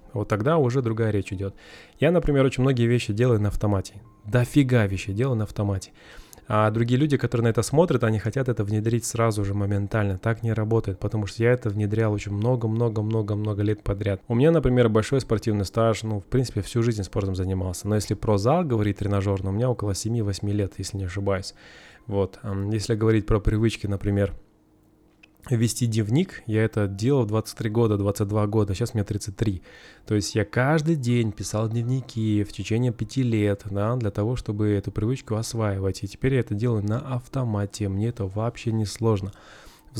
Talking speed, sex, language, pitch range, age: 185 wpm, male, Russian, 100-120 Hz, 20-39